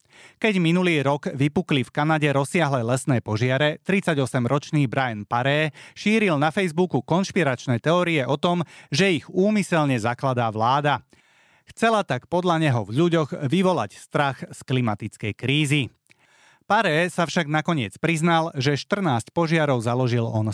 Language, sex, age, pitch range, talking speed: Slovak, male, 30-49, 120-165 Hz, 130 wpm